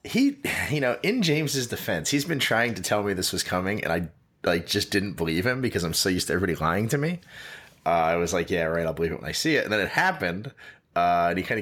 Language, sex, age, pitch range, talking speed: English, male, 30-49, 95-155 Hz, 270 wpm